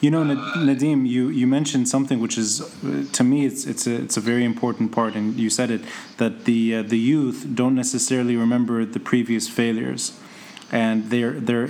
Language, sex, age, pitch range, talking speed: English, male, 20-39, 115-150 Hz, 190 wpm